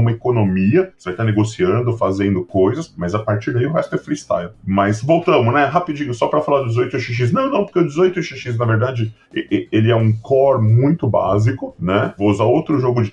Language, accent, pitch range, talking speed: Portuguese, Brazilian, 110-135 Hz, 200 wpm